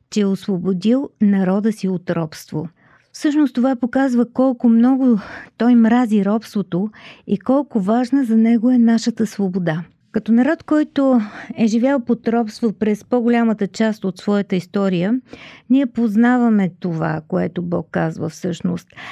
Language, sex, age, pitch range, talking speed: Bulgarian, female, 50-69, 195-240 Hz, 135 wpm